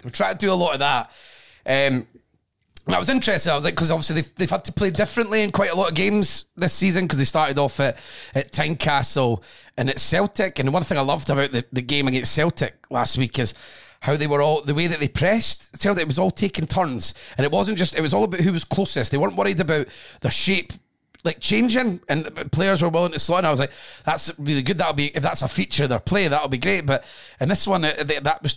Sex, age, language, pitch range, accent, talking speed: male, 30-49, English, 140-190 Hz, British, 265 wpm